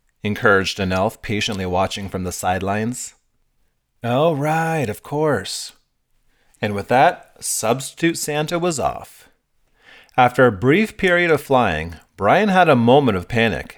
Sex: male